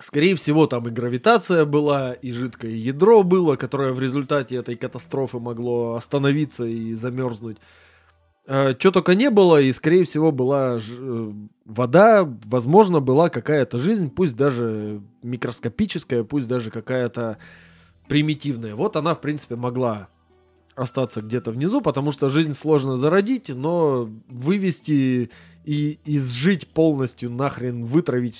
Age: 20-39